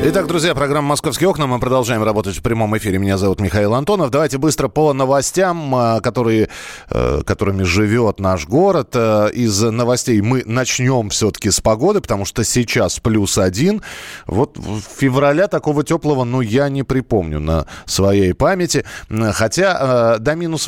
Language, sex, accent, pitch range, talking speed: Russian, male, native, 105-150 Hz, 150 wpm